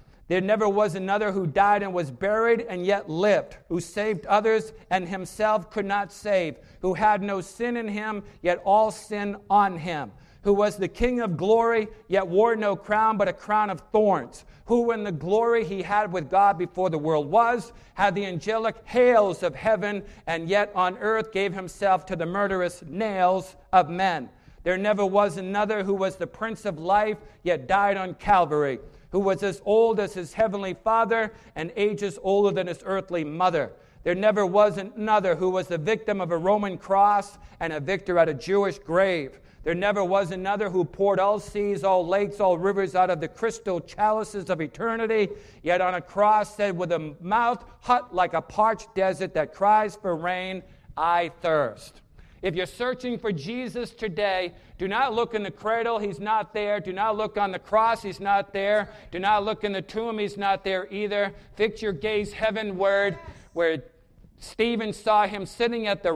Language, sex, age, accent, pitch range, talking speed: English, male, 50-69, American, 185-215 Hz, 190 wpm